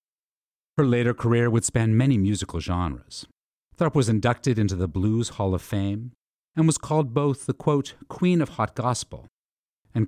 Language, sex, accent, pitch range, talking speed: English, male, American, 90-130 Hz, 165 wpm